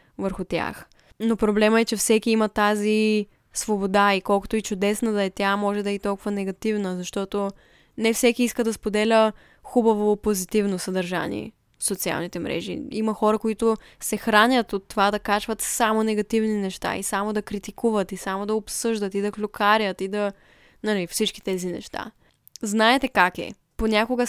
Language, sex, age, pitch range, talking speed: Bulgarian, female, 10-29, 200-225 Hz, 170 wpm